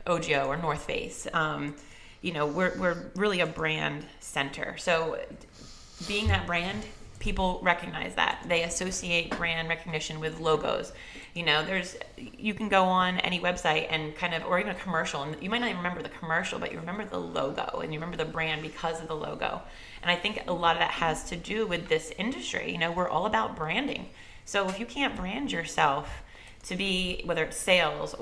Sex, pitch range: female, 155-185 Hz